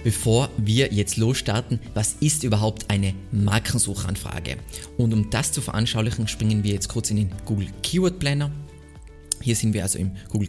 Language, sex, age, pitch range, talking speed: German, male, 20-39, 105-125 Hz, 165 wpm